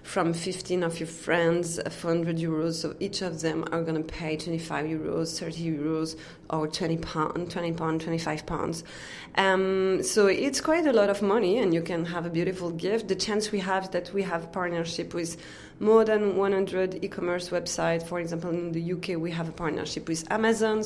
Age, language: 20-39, English